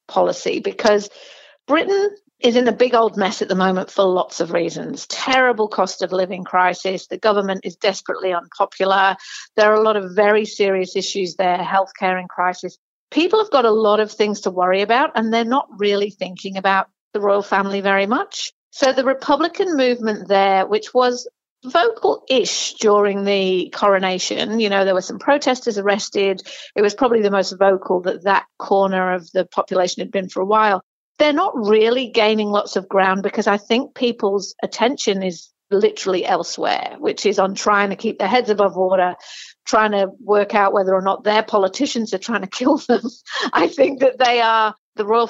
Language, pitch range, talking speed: English, 190-235 Hz, 185 wpm